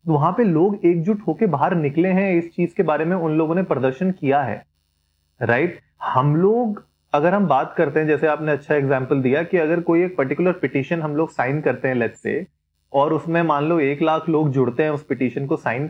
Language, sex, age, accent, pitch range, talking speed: Hindi, male, 30-49, native, 135-175 Hz, 225 wpm